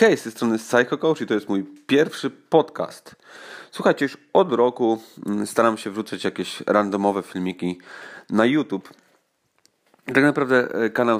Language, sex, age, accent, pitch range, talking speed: English, male, 30-49, Polish, 100-140 Hz, 140 wpm